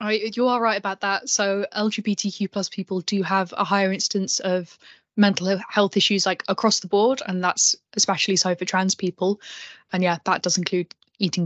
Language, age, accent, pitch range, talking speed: English, 10-29, British, 185-215 Hz, 185 wpm